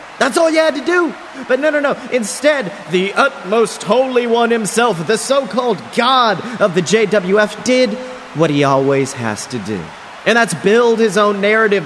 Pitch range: 190-245 Hz